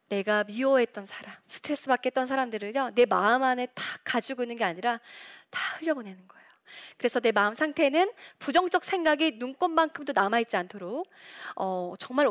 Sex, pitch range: female, 210-315 Hz